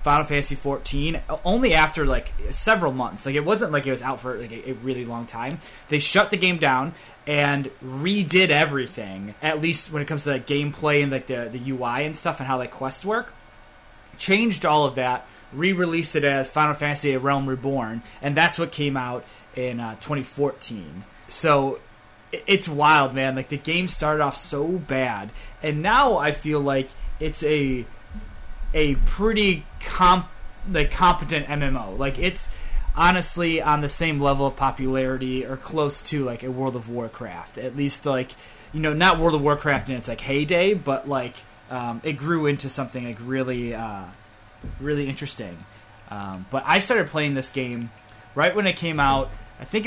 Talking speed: 180 wpm